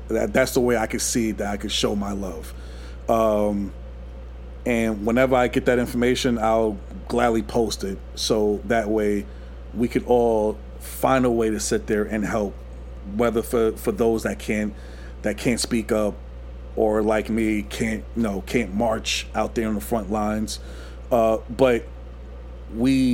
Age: 40-59